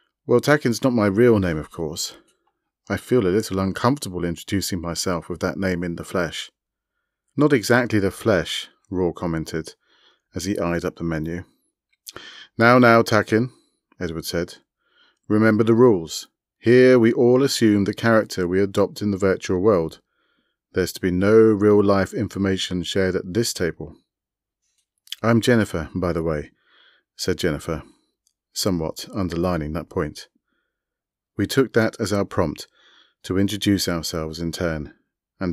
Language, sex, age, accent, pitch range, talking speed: English, male, 30-49, British, 90-110 Hz, 145 wpm